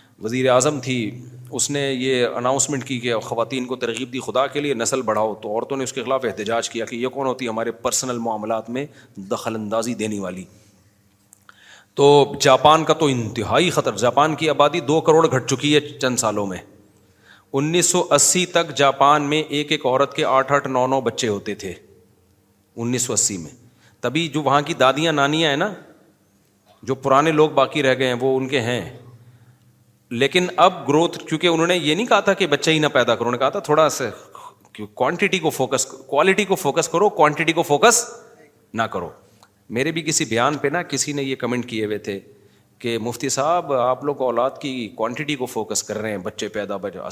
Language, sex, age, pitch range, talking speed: Urdu, male, 40-59, 115-155 Hz, 200 wpm